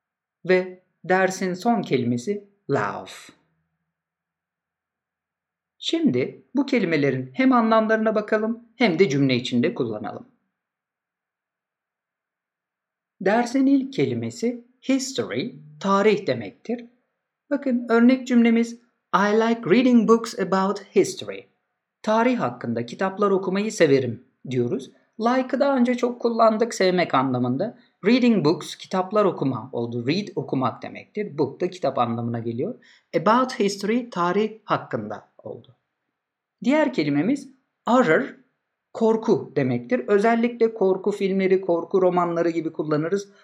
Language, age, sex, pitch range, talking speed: Turkish, 50-69, male, 145-235 Hz, 100 wpm